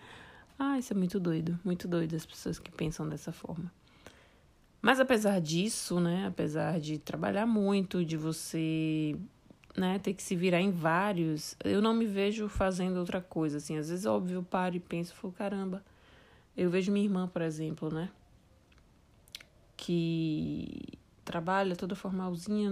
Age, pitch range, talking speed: 20-39, 170-200 Hz, 155 wpm